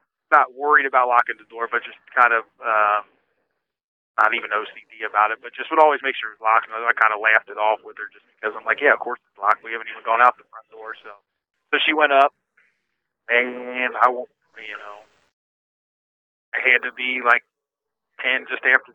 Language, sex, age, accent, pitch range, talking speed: English, male, 30-49, American, 110-125 Hz, 220 wpm